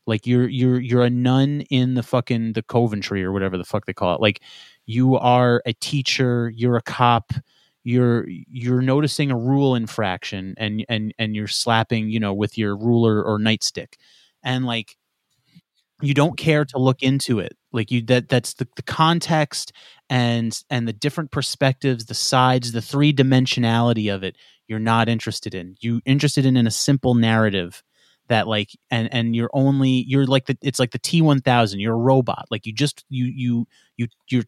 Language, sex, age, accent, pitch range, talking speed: English, male, 30-49, American, 115-135 Hz, 185 wpm